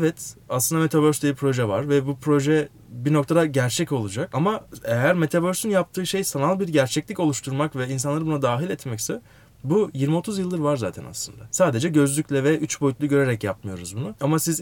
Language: Turkish